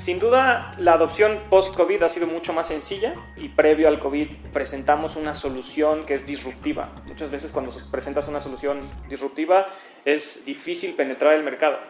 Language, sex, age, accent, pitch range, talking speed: Spanish, male, 20-39, Mexican, 135-165 Hz, 160 wpm